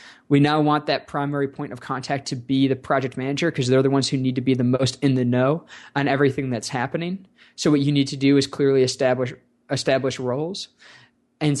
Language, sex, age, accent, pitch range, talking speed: English, male, 20-39, American, 130-145 Hz, 215 wpm